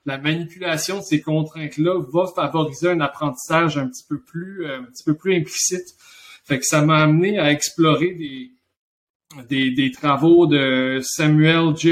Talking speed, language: 160 wpm, French